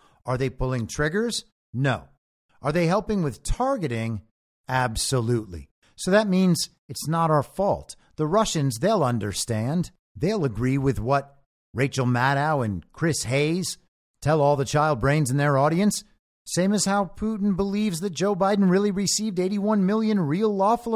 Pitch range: 125-180 Hz